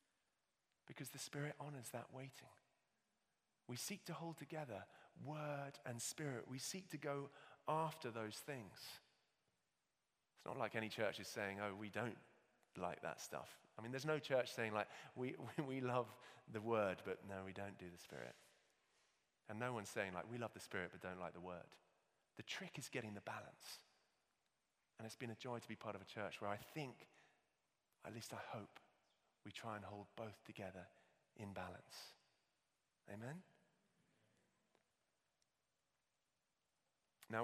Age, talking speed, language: 30-49, 165 wpm, English